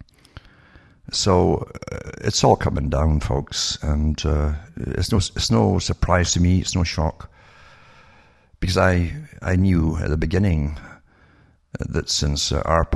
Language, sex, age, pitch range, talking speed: English, male, 60-79, 75-90 Hz, 140 wpm